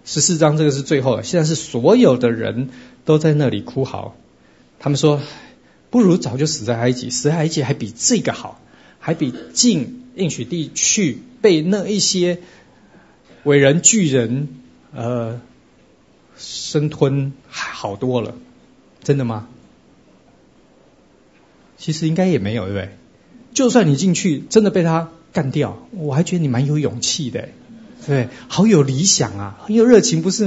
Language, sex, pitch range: Chinese, male, 130-190 Hz